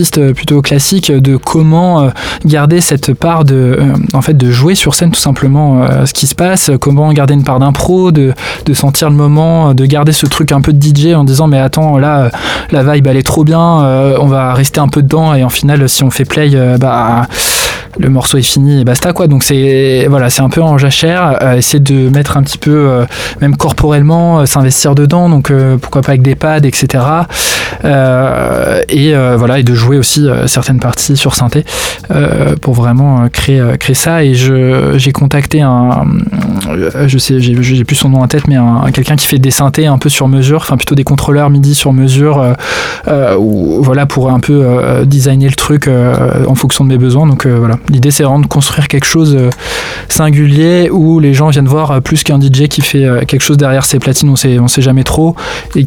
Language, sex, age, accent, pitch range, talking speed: French, male, 20-39, French, 130-150 Hz, 215 wpm